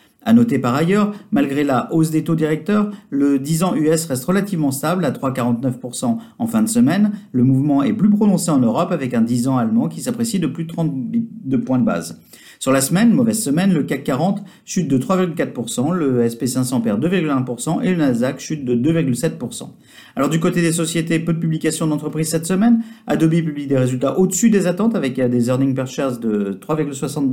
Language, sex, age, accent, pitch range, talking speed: French, male, 50-69, French, 135-190 Hz, 200 wpm